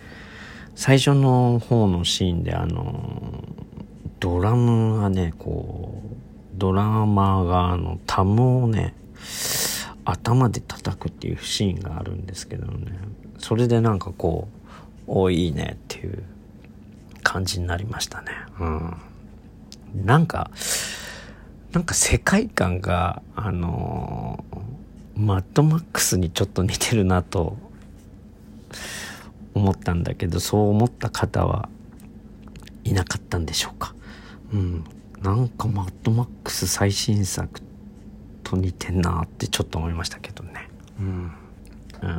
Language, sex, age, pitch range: Japanese, male, 40-59, 90-110 Hz